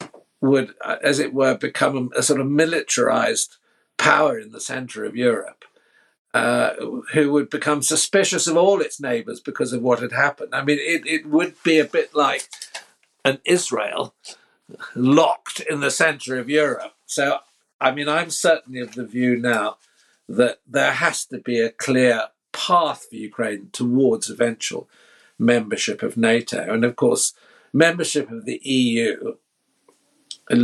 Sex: male